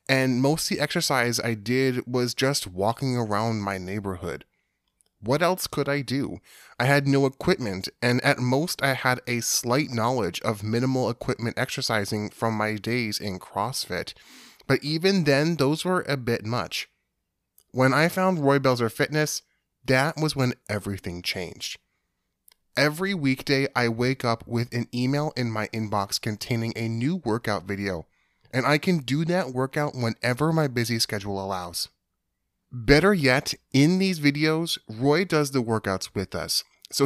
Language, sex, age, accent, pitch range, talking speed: English, male, 10-29, American, 110-145 Hz, 155 wpm